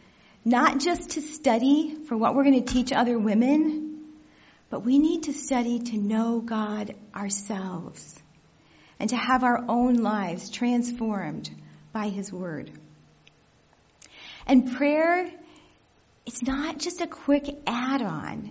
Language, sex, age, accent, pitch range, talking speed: English, female, 40-59, American, 220-285 Hz, 125 wpm